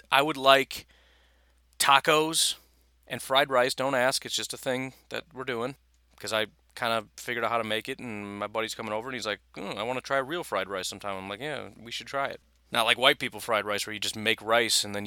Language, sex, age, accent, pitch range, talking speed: English, male, 30-49, American, 100-145 Hz, 250 wpm